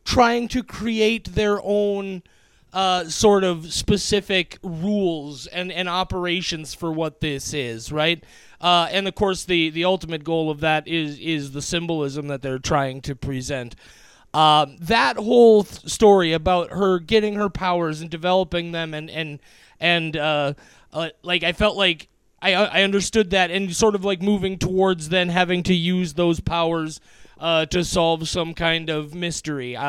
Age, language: 30-49, English